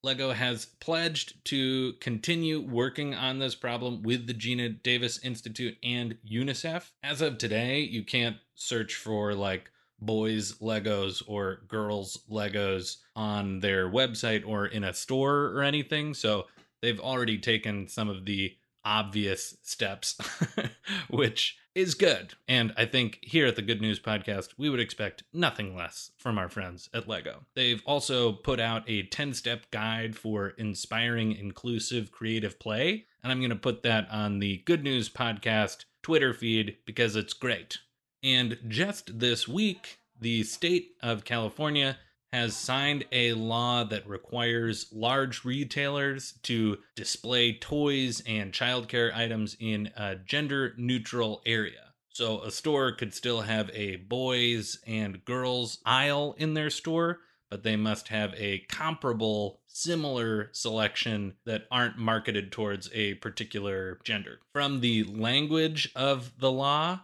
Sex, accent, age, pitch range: male, American, 30-49, 105-130 Hz